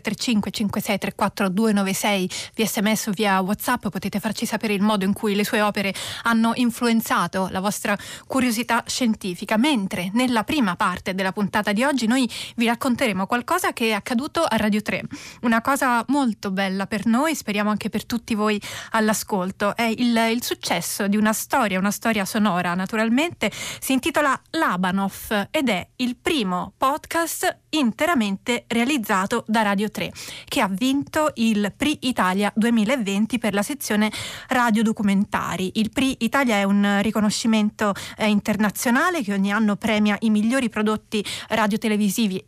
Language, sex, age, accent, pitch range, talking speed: Italian, female, 20-39, native, 205-245 Hz, 150 wpm